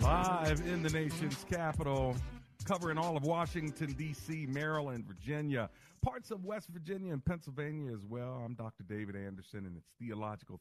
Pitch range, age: 100-135 Hz, 50-69